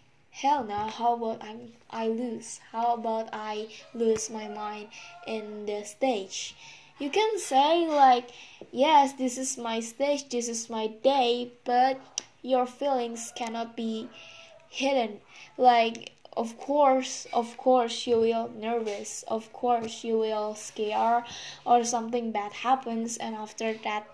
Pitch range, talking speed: 220-265 Hz, 135 wpm